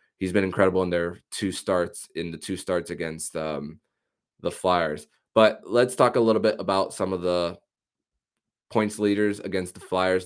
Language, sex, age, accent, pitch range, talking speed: English, male, 20-39, American, 90-105 Hz, 175 wpm